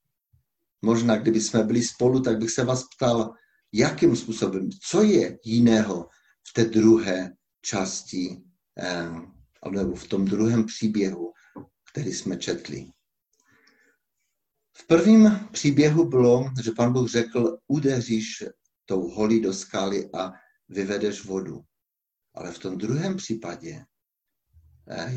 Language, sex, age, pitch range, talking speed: Czech, male, 60-79, 95-125 Hz, 115 wpm